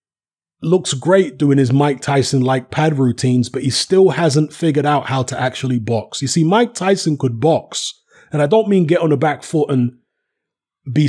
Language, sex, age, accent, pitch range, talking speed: English, male, 30-49, British, 135-180 Hz, 195 wpm